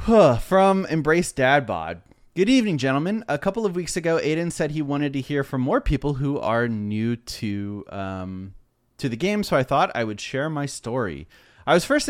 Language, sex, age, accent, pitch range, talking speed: English, male, 30-49, American, 115-165 Hz, 200 wpm